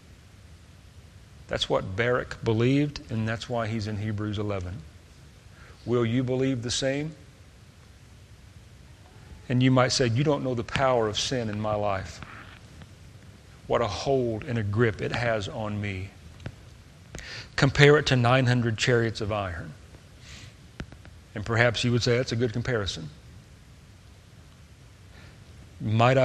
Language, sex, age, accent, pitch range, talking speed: English, male, 40-59, American, 100-125 Hz, 130 wpm